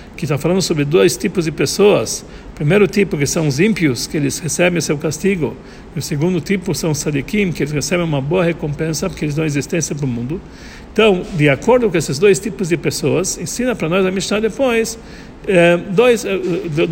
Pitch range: 155-210 Hz